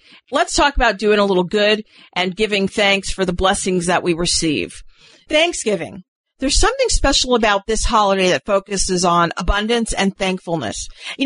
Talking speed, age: 160 wpm, 40-59